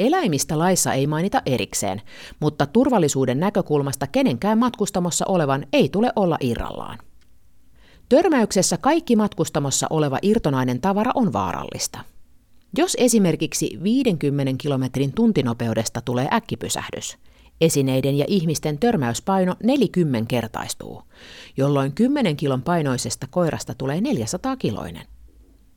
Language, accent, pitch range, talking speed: Finnish, native, 130-210 Hz, 100 wpm